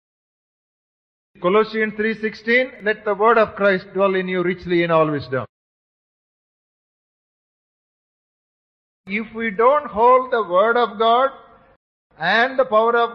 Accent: Indian